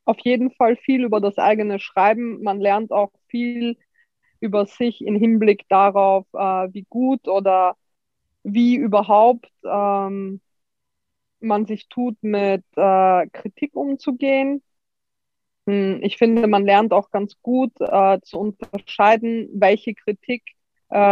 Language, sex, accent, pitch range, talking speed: German, female, German, 200-235 Hz, 110 wpm